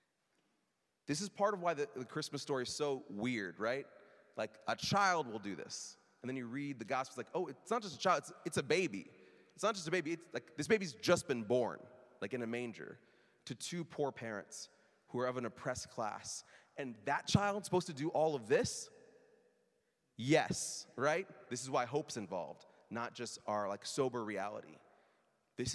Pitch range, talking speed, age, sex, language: 120-150 Hz, 195 wpm, 30-49, male, English